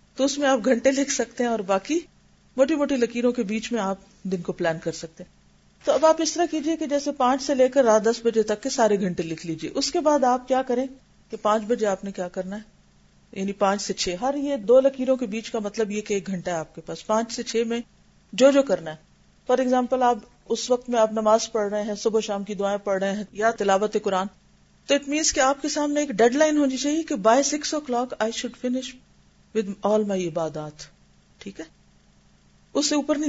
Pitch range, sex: 190-265 Hz, female